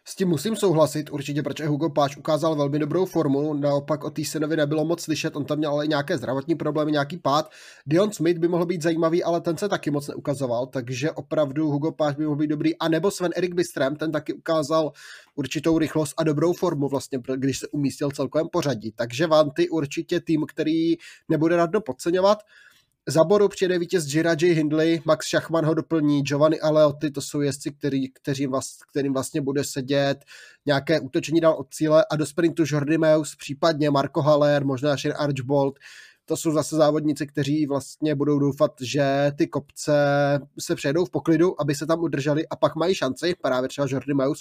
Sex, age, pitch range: male, 20-39, 145-160 Hz